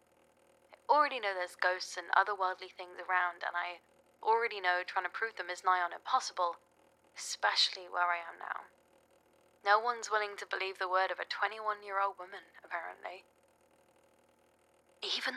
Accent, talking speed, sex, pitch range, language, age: British, 150 wpm, female, 180-205 Hz, English, 20-39